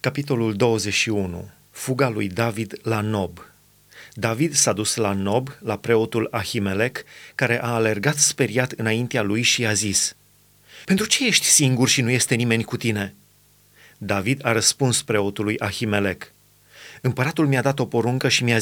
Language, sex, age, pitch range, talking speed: Romanian, male, 30-49, 115-140 Hz, 150 wpm